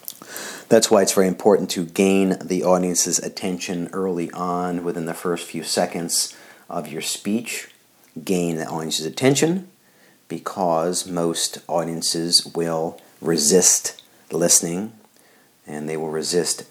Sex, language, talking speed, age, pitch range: male, English, 120 wpm, 50-69, 80-90 Hz